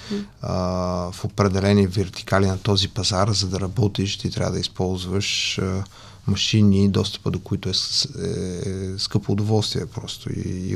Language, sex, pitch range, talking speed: English, male, 95-115 Hz, 125 wpm